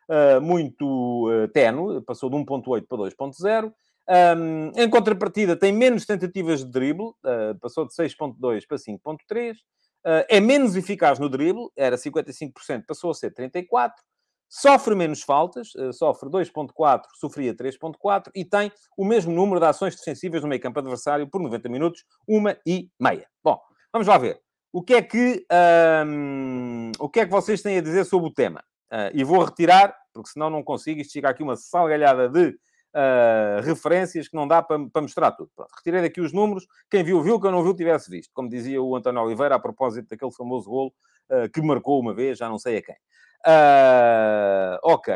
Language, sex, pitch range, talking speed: Portuguese, male, 135-195 Hz, 170 wpm